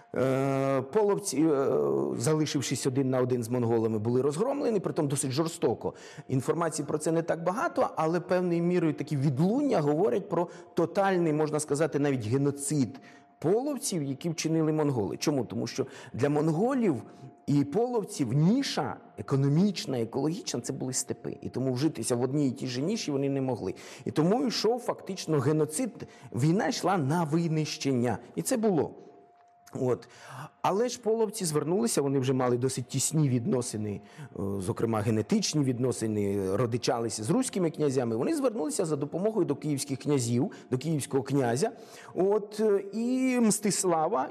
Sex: male